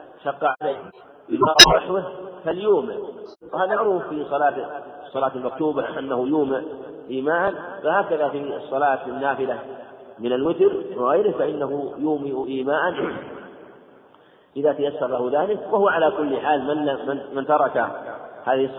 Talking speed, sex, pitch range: 115 wpm, male, 135-150 Hz